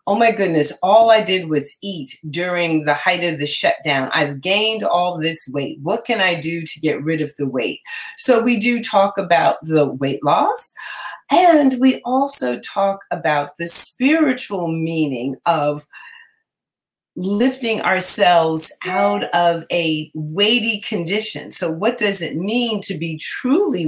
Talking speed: 155 wpm